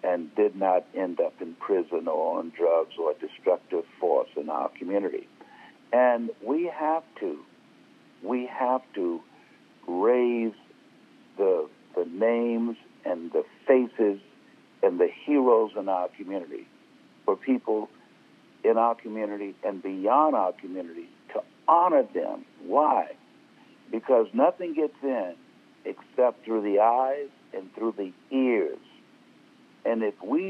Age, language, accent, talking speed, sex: 60-79, English, American, 130 wpm, male